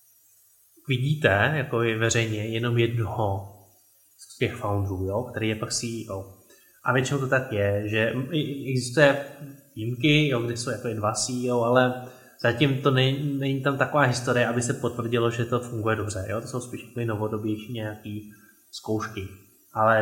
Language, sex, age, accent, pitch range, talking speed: Czech, male, 20-39, native, 110-125 Hz, 150 wpm